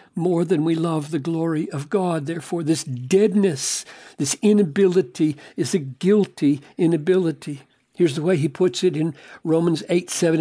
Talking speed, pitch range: 155 wpm, 155-195 Hz